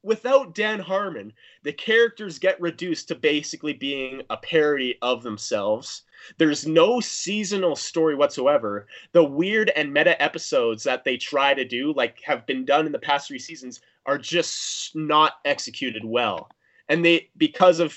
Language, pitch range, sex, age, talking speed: English, 125-175 Hz, male, 30-49, 155 wpm